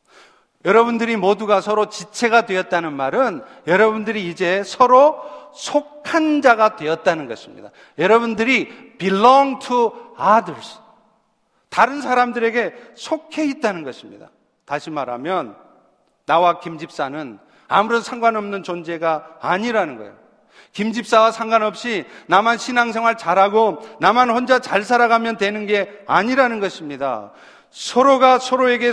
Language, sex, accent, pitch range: Korean, male, native, 185-245 Hz